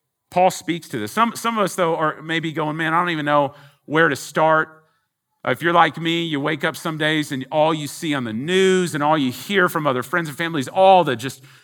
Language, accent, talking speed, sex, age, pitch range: English, American, 250 wpm, male, 40-59, 145-185 Hz